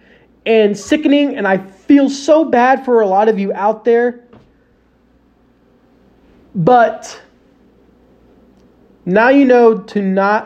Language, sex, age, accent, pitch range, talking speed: English, male, 30-49, American, 190-245 Hz, 115 wpm